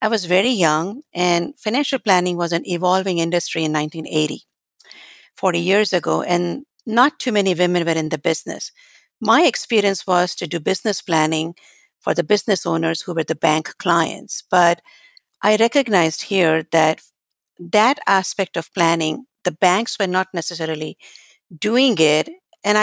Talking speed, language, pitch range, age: 150 wpm, English, 165-210 Hz, 50-69